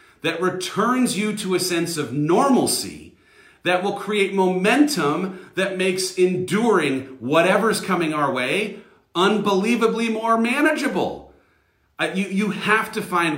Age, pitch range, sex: 40-59, 145-200 Hz, male